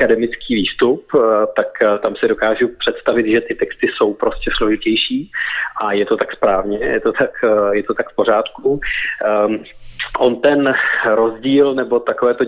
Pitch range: 110-130 Hz